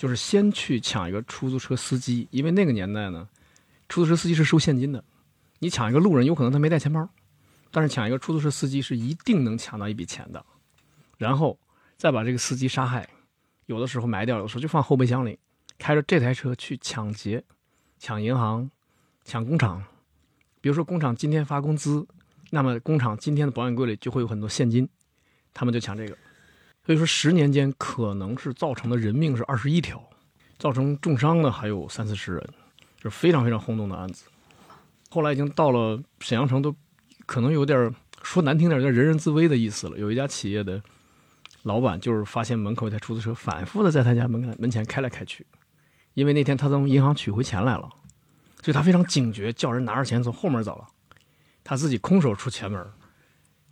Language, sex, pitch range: Chinese, male, 110-145 Hz